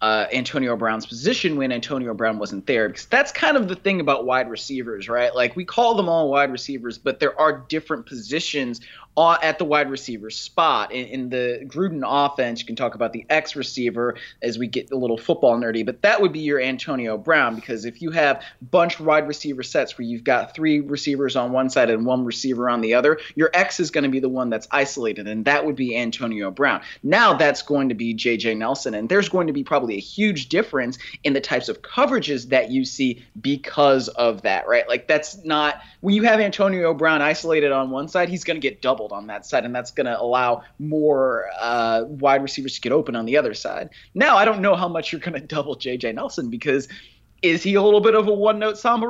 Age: 30-49